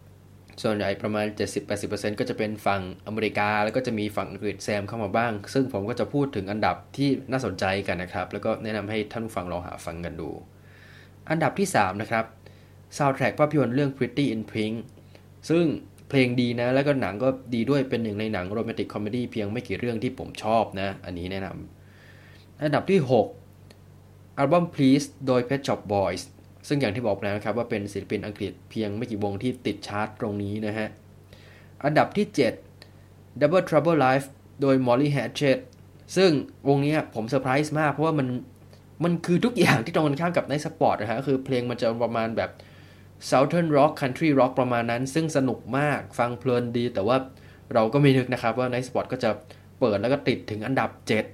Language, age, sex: Thai, 20-39, male